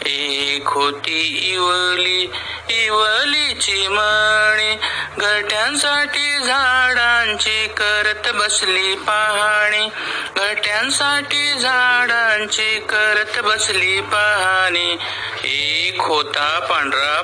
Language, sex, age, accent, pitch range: Marathi, male, 50-69, native, 170-220 Hz